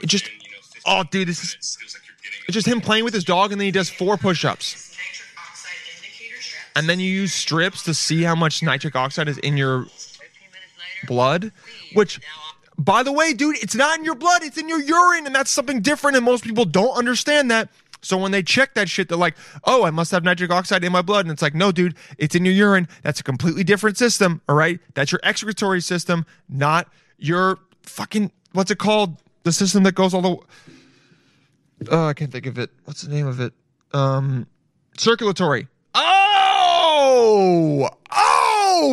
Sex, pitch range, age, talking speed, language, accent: male, 150-210 Hz, 20-39, 185 wpm, English, American